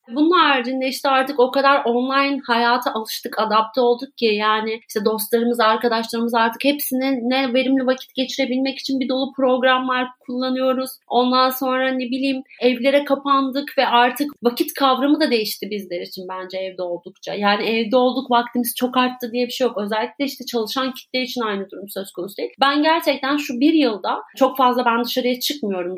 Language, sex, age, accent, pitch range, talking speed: Turkish, female, 30-49, native, 220-270 Hz, 170 wpm